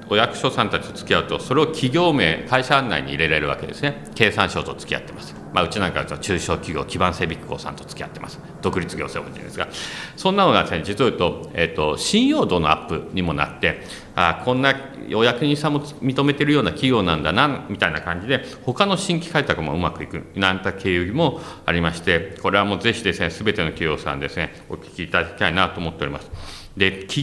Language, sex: Japanese, male